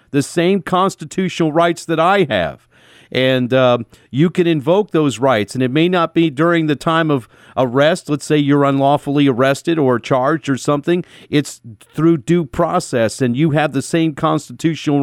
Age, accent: 50-69, American